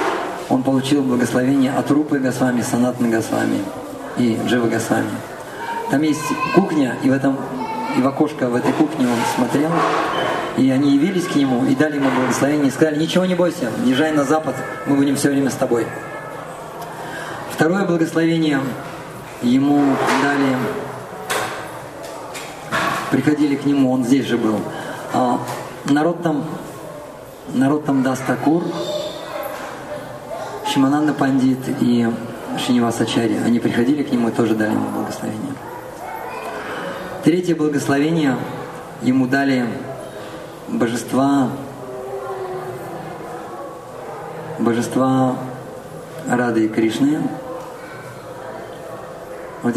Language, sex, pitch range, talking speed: Russian, male, 125-150 Hz, 105 wpm